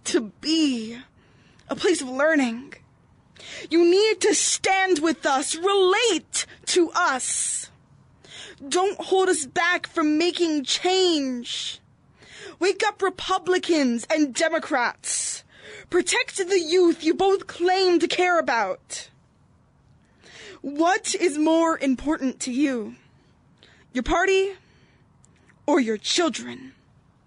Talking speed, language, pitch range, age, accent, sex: 105 wpm, English, 285-370 Hz, 20-39, American, female